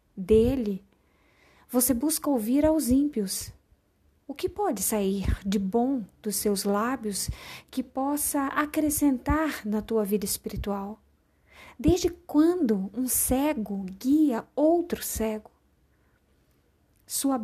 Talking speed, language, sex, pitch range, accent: 105 wpm, Portuguese, female, 215-285 Hz, Brazilian